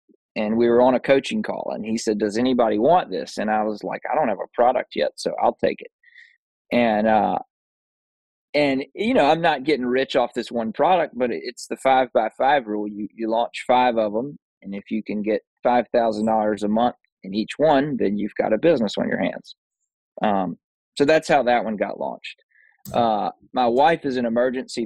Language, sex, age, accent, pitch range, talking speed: English, male, 20-39, American, 110-135 Hz, 210 wpm